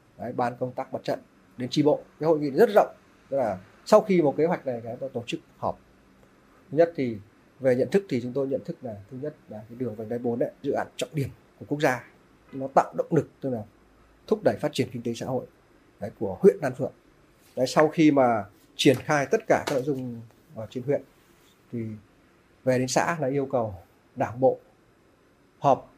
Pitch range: 120-150 Hz